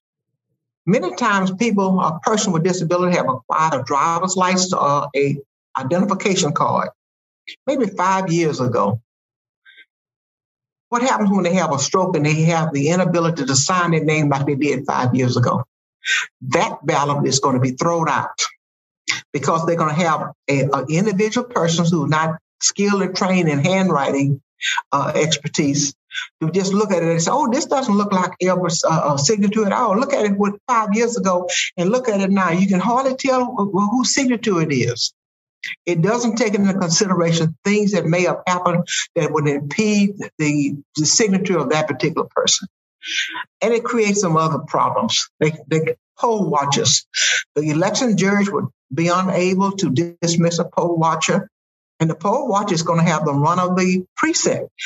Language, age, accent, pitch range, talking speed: English, 60-79, American, 155-200 Hz, 175 wpm